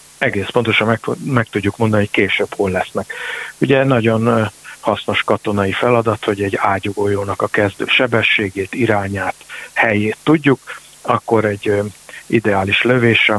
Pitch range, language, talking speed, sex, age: 105-135 Hz, Hungarian, 125 wpm, male, 50-69